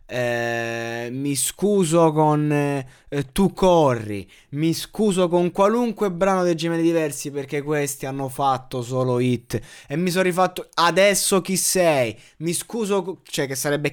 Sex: male